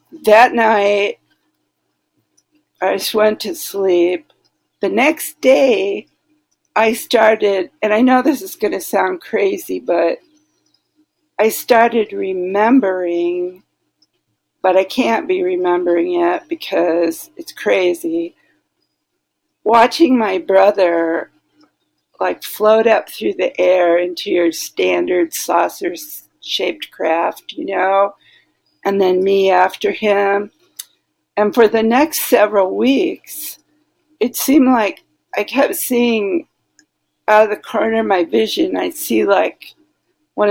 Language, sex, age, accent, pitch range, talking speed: English, female, 60-79, American, 190-310 Hz, 115 wpm